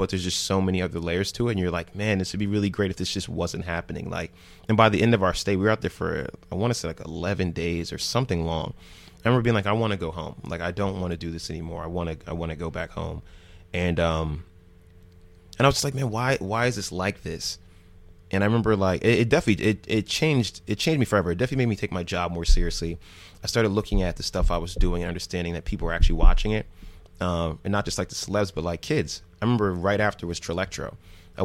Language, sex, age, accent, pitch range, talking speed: English, male, 30-49, American, 85-105 Hz, 270 wpm